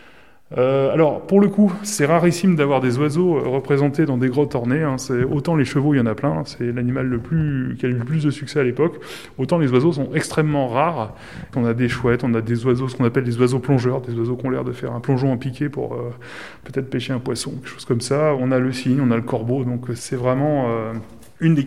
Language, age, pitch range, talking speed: French, 20-39, 125-150 Hz, 260 wpm